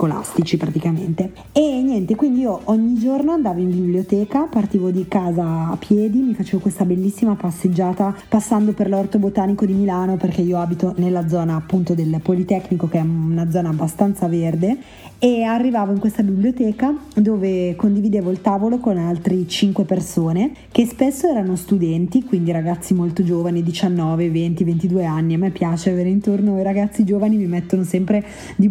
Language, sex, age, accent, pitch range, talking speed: Italian, female, 20-39, native, 175-210 Hz, 160 wpm